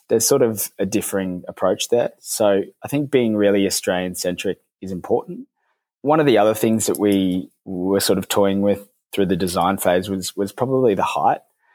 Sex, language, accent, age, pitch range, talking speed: male, English, Australian, 20-39, 90-105 Hz, 190 wpm